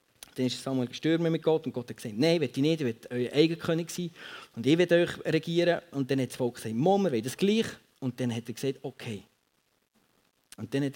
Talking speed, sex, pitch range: 245 wpm, male, 130-170 Hz